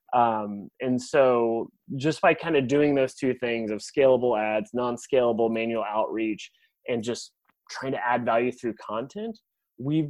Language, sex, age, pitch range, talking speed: English, male, 20-39, 115-135 Hz, 155 wpm